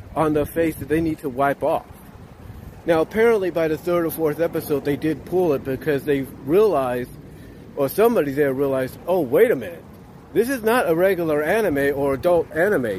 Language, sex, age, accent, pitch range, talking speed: English, male, 50-69, American, 145-195 Hz, 190 wpm